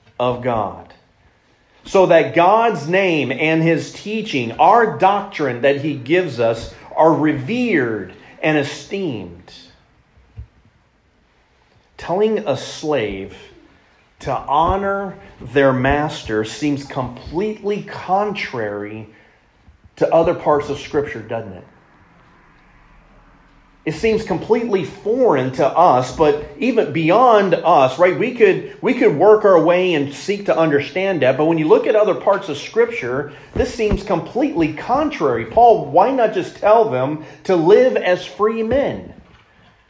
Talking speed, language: 125 wpm, English